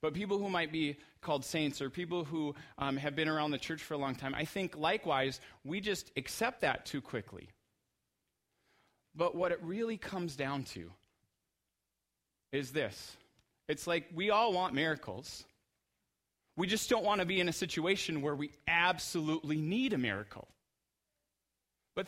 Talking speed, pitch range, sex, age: 165 wpm, 120-175 Hz, male, 30-49